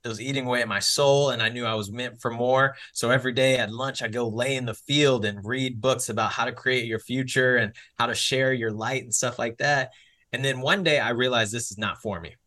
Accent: American